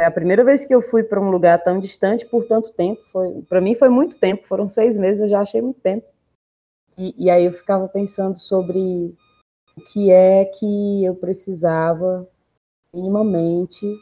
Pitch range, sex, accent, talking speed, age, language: 160-205 Hz, female, Brazilian, 175 wpm, 20-39, Portuguese